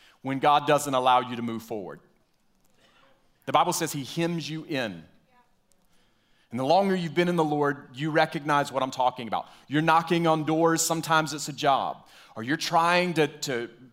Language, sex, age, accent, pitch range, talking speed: English, male, 30-49, American, 120-160 Hz, 180 wpm